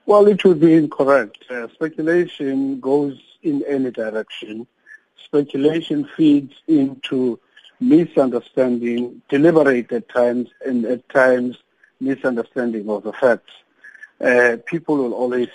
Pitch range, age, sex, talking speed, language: 120-150 Hz, 50-69, male, 110 wpm, English